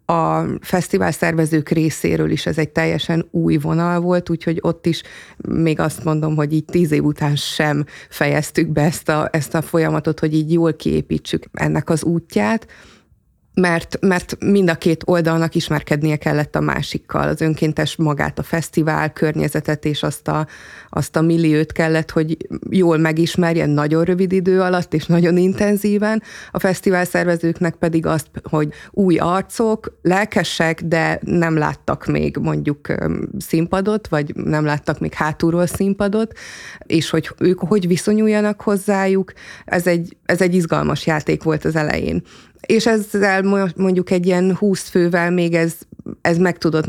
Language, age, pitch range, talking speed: Hungarian, 30-49, 155-180 Hz, 150 wpm